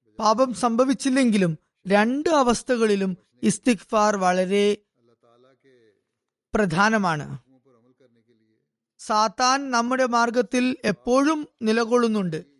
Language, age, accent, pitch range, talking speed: Malayalam, 20-39, native, 185-245 Hz, 55 wpm